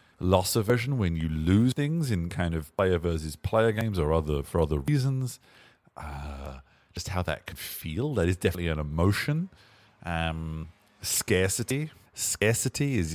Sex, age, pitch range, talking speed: male, 30-49, 80-105 Hz, 150 wpm